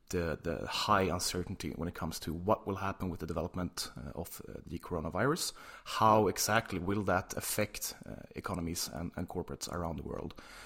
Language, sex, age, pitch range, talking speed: English, male, 30-49, 85-100 Hz, 180 wpm